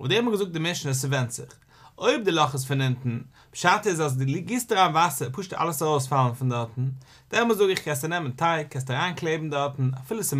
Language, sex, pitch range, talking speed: English, male, 130-185 Hz, 115 wpm